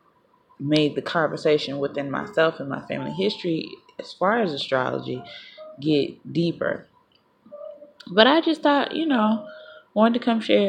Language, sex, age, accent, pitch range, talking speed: English, female, 20-39, American, 150-225 Hz, 140 wpm